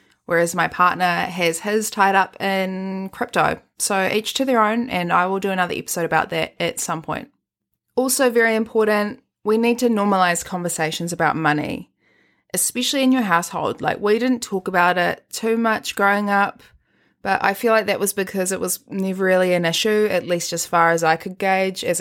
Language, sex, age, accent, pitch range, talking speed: English, female, 20-39, Australian, 175-210 Hz, 195 wpm